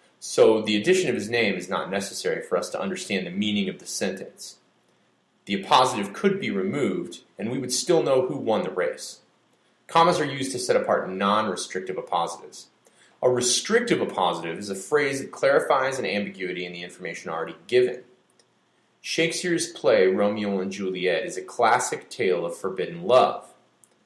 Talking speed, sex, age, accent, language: 165 wpm, male, 30-49, American, English